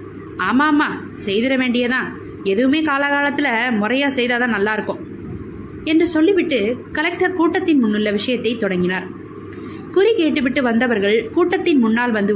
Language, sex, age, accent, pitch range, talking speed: Tamil, female, 20-39, native, 225-320 Hz, 50 wpm